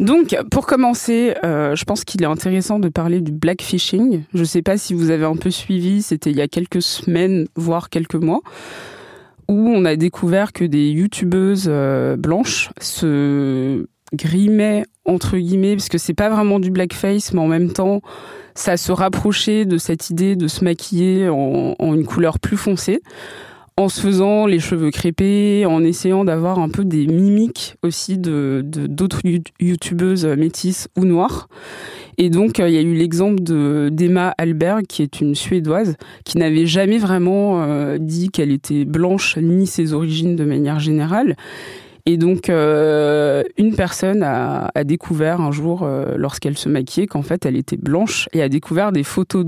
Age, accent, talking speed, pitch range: 20-39, French, 175 wpm, 160-190 Hz